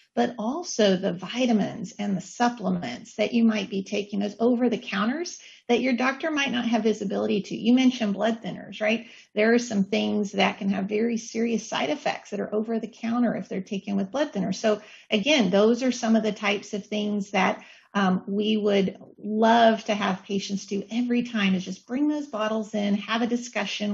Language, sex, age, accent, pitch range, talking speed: English, female, 40-59, American, 200-230 Hz, 205 wpm